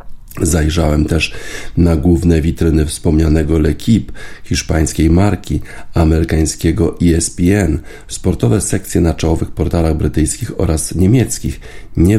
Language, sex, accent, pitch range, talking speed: Polish, male, native, 80-90 Hz, 100 wpm